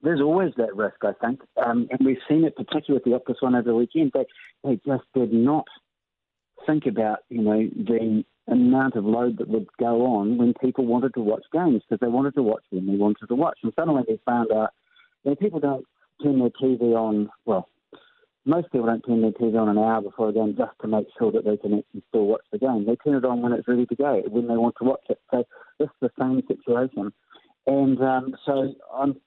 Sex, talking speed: male, 240 wpm